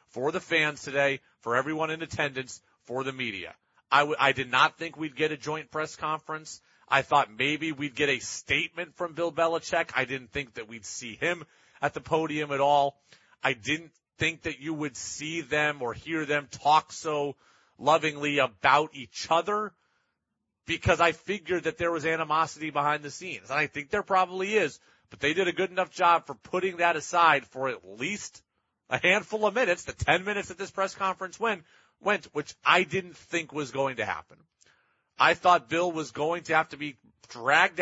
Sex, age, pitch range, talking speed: male, 30-49, 140-175 Hz, 195 wpm